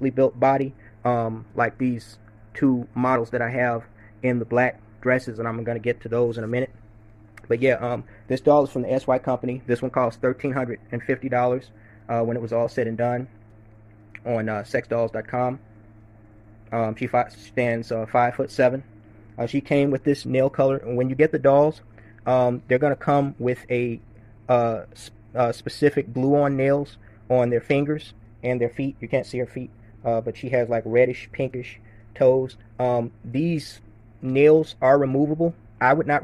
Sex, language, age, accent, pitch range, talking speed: male, English, 20-39, American, 115-130 Hz, 180 wpm